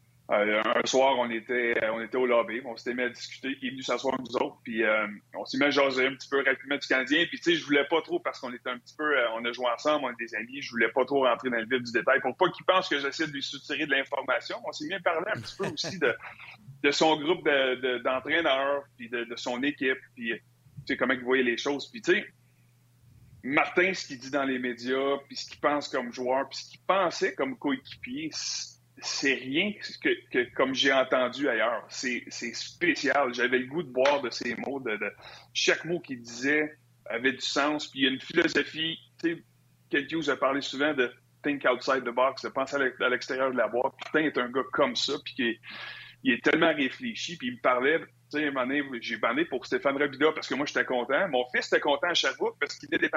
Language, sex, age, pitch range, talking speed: French, male, 30-49, 120-150 Hz, 255 wpm